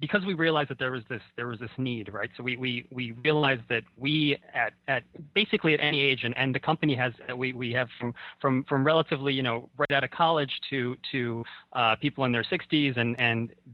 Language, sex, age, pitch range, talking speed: English, male, 30-49, 120-150 Hz, 225 wpm